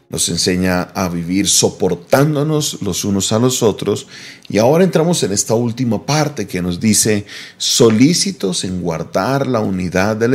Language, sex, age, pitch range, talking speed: Spanish, male, 40-59, 95-130 Hz, 150 wpm